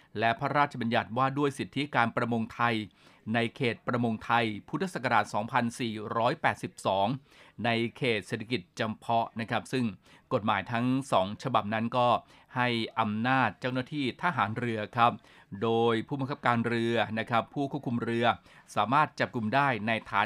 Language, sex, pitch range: Thai, male, 115-130 Hz